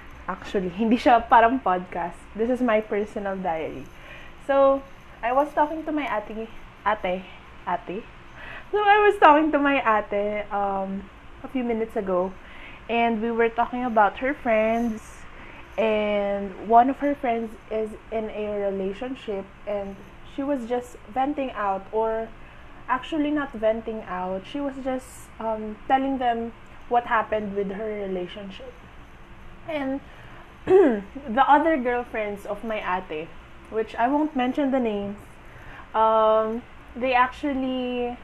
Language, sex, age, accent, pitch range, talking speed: Filipino, female, 20-39, native, 215-265 Hz, 135 wpm